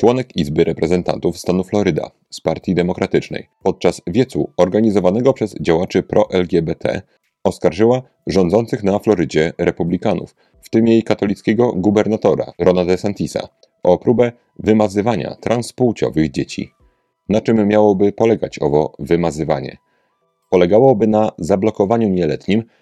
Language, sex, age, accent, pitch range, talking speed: Polish, male, 30-49, native, 90-115 Hz, 110 wpm